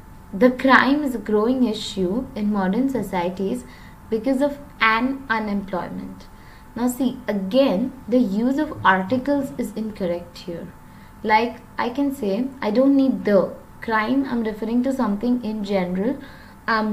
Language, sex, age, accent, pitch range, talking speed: English, female, 20-39, Indian, 195-250 Hz, 145 wpm